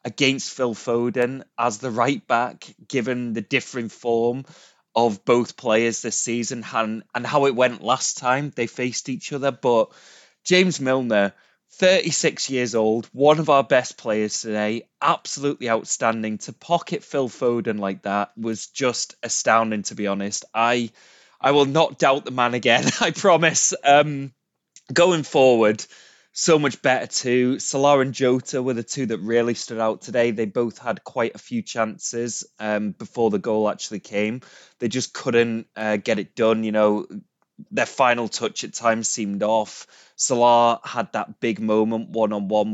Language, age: English, 20-39